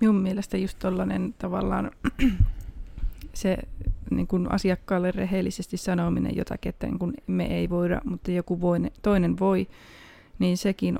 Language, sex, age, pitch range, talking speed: Finnish, female, 20-39, 170-195 Hz, 125 wpm